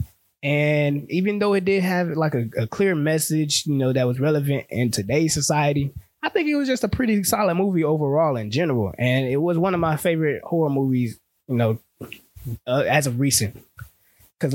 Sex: male